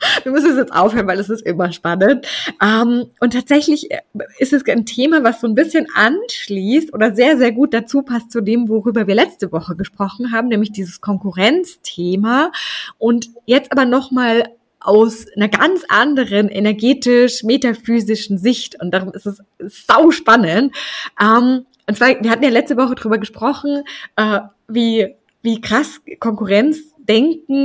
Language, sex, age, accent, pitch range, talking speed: German, female, 20-39, German, 205-275 Hz, 145 wpm